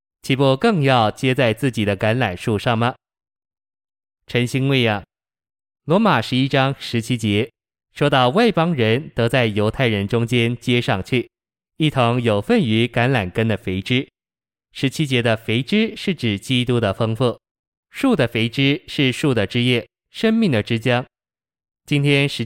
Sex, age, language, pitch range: male, 20-39, Chinese, 115-135 Hz